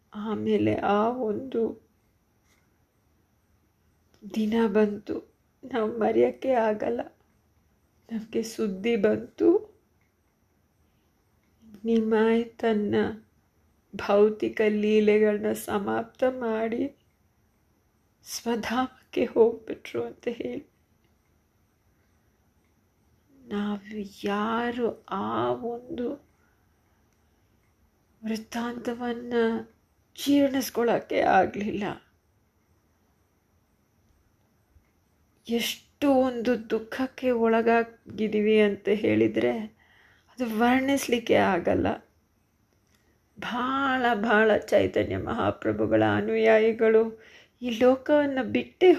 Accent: native